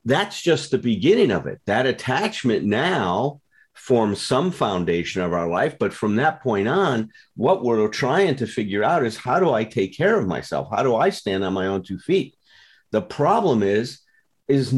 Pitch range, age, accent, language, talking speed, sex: 105-155 Hz, 50-69, American, English, 190 wpm, male